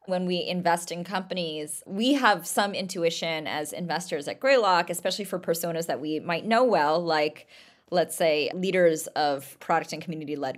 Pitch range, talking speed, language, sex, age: 160-210 Hz, 165 wpm, English, female, 20-39